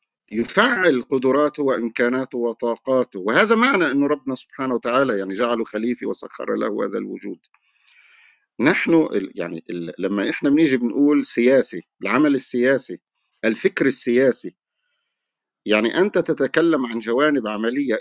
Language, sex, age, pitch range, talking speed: Arabic, male, 50-69, 115-150 Hz, 110 wpm